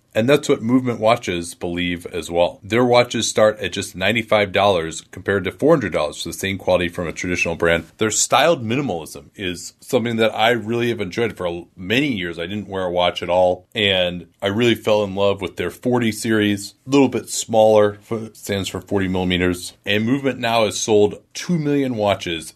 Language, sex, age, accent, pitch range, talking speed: English, male, 30-49, American, 90-115 Hz, 200 wpm